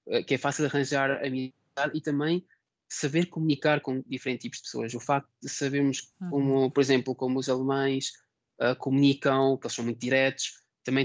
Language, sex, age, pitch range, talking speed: Portuguese, male, 20-39, 125-145 Hz, 180 wpm